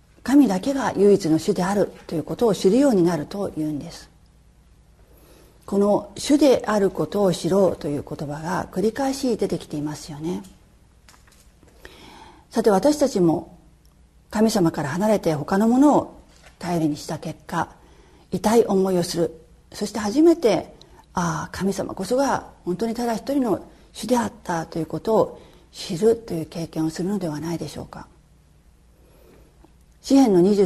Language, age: Japanese, 40-59